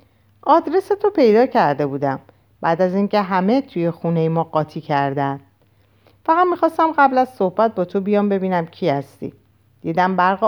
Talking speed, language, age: 155 wpm, Persian, 50-69